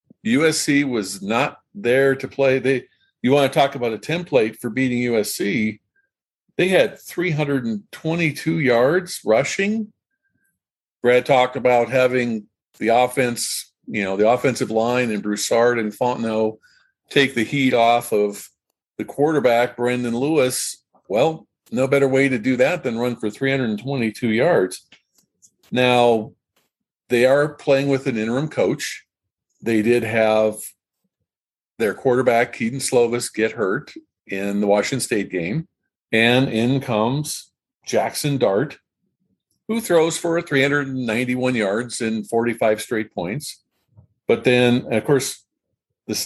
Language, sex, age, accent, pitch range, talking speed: English, male, 50-69, American, 115-140 Hz, 130 wpm